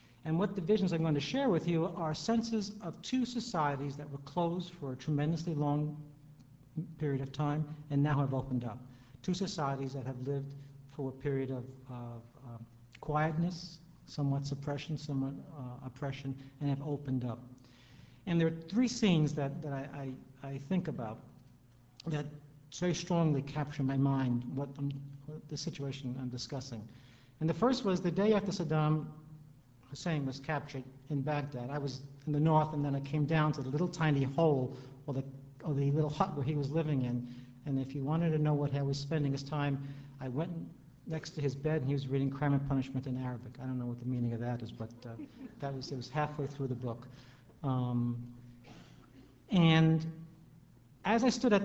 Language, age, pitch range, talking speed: English, 60-79, 130-155 Hz, 195 wpm